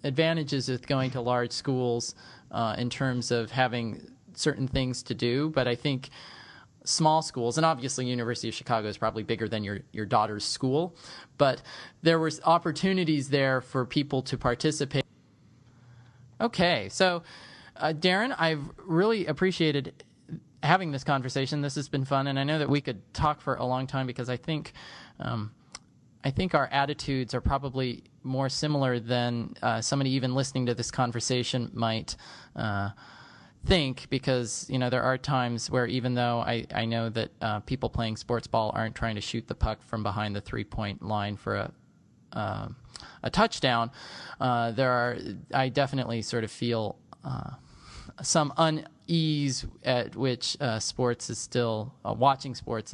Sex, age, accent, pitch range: male, 20-39, American, 115-140 Hz